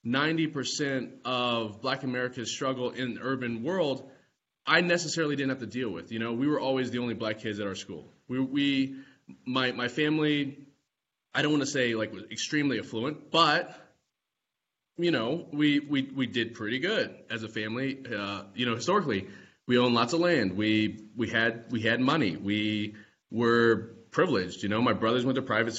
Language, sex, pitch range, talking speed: English, male, 110-145 Hz, 180 wpm